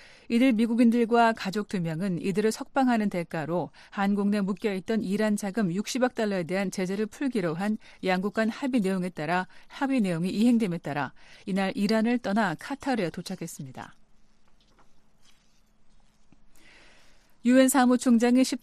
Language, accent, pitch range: Korean, native, 190-240 Hz